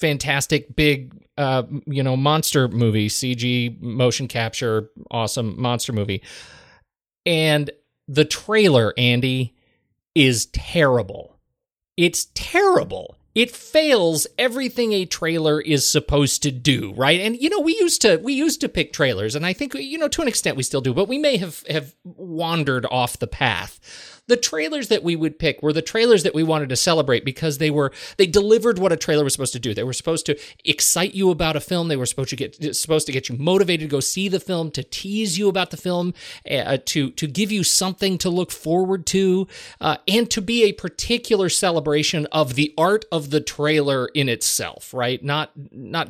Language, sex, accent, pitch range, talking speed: English, male, American, 130-185 Hz, 190 wpm